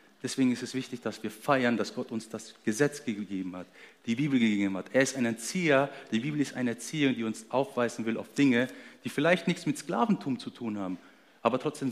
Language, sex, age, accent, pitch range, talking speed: German, male, 40-59, German, 105-135 Hz, 215 wpm